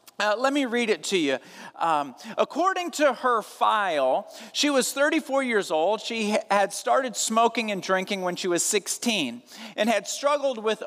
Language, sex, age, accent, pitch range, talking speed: English, male, 40-59, American, 205-290 Hz, 170 wpm